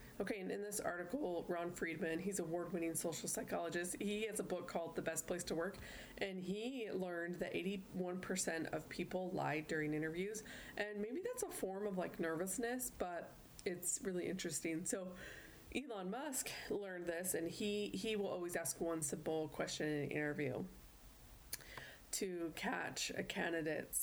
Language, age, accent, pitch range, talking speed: English, 20-39, American, 165-205 Hz, 165 wpm